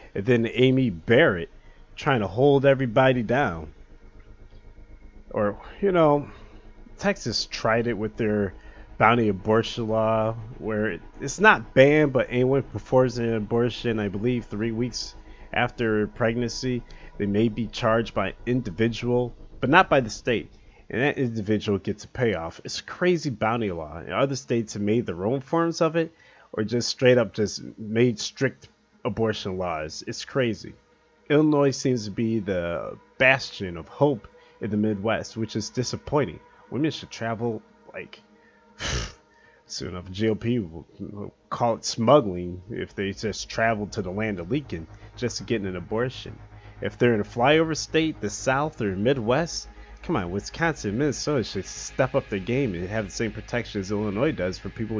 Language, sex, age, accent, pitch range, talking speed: English, male, 30-49, American, 105-125 Hz, 160 wpm